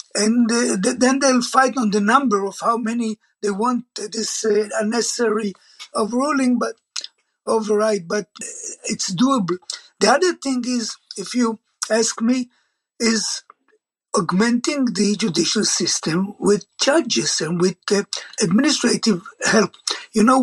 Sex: male